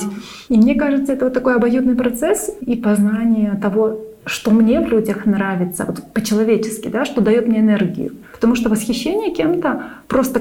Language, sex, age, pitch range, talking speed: Russian, female, 30-49, 195-230 Hz, 160 wpm